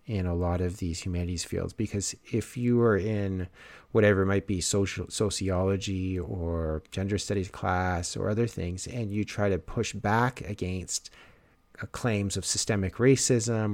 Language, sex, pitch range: English, male, 95-125 Hz